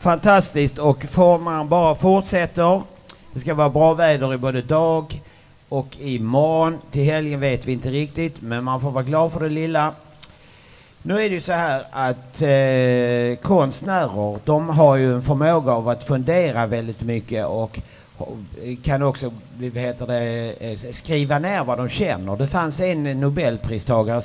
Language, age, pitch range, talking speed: Swedish, 50-69, 115-155 Hz, 160 wpm